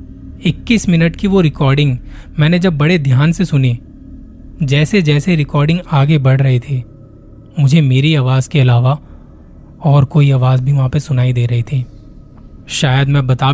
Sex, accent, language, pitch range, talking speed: male, native, Hindi, 125-150 Hz, 160 wpm